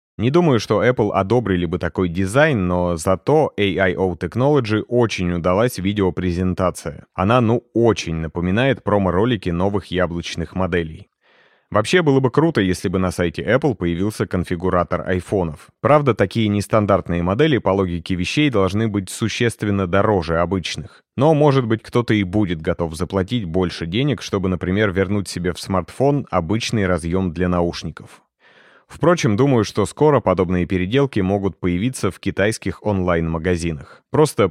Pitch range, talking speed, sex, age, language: 90-110 Hz, 135 wpm, male, 30-49, Russian